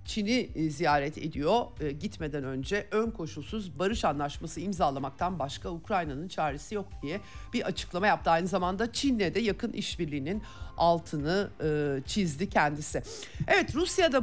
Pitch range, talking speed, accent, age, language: 150-215 Hz, 130 wpm, native, 50-69, Turkish